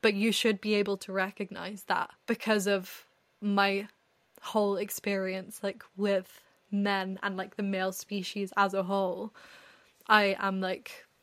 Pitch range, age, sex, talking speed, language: 190-220 Hz, 10-29, female, 145 wpm, English